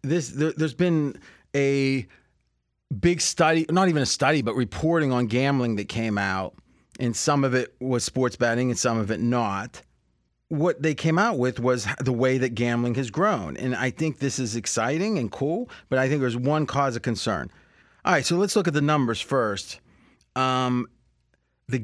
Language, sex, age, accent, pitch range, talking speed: English, male, 30-49, American, 120-155 Hz, 185 wpm